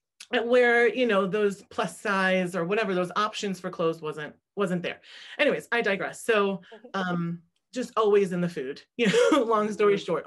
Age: 30-49